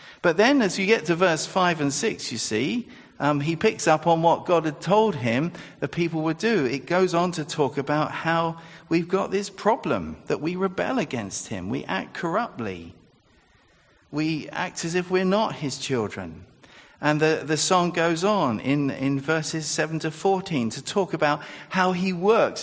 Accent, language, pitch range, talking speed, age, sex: British, English, 120-175 Hz, 190 wpm, 50-69, male